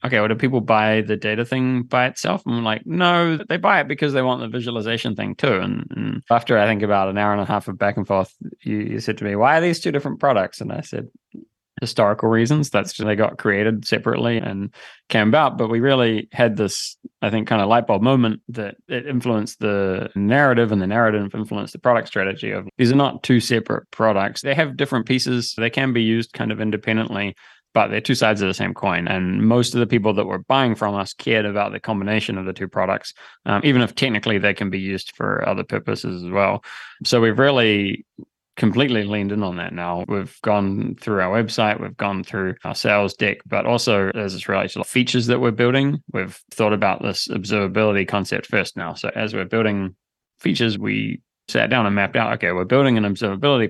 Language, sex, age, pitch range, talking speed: English, male, 20-39, 100-120 Hz, 220 wpm